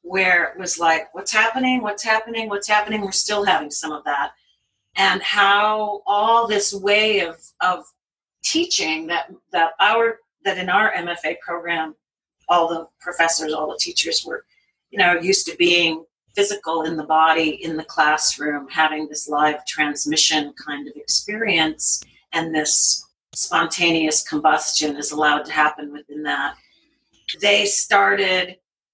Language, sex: English, female